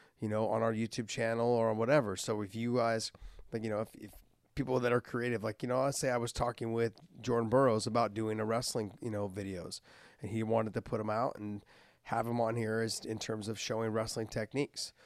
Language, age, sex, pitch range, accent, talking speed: English, 30-49, male, 105-120 Hz, American, 230 wpm